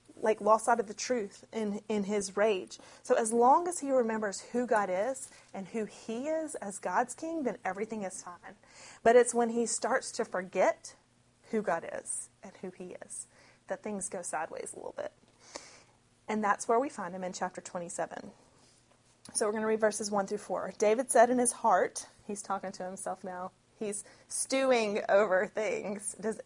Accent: American